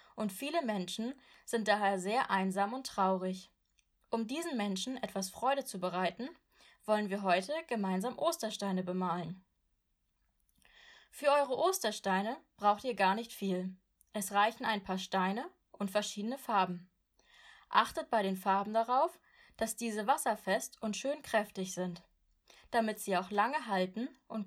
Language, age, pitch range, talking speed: German, 20-39, 195-260 Hz, 135 wpm